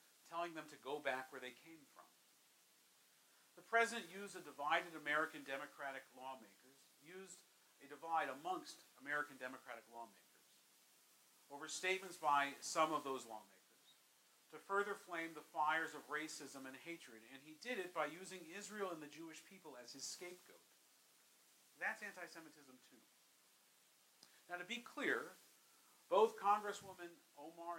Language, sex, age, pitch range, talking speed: English, male, 50-69, 135-195 Hz, 140 wpm